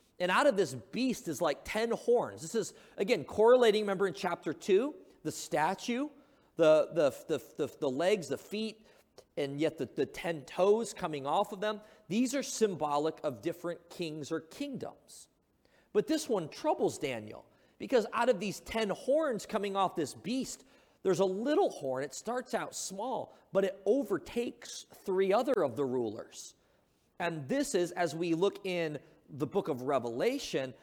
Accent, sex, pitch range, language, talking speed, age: American, male, 170-245 Hz, English, 170 wpm, 40-59